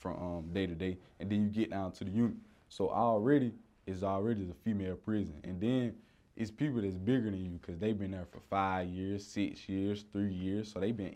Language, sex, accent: English, male, American